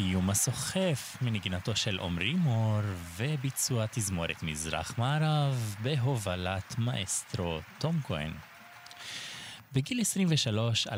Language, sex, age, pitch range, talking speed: Hebrew, male, 20-39, 100-140 Hz, 85 wpm